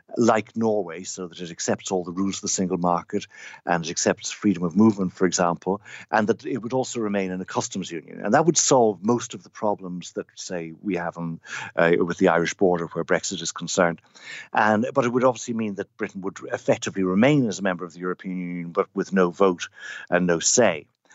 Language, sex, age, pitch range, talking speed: English, male, 60-79, 90-115 Hz, 220 wpm